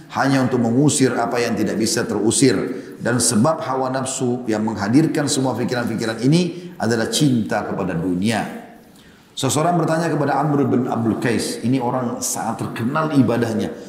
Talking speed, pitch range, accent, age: 145 wpm, 120-150 Hz, native, 40-59